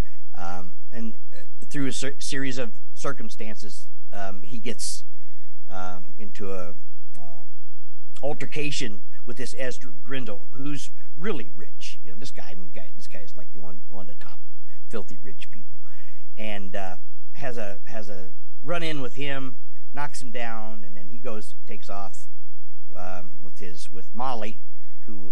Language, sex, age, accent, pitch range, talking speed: English, male, 50-69, American, 90-120 Hz, 155 wpm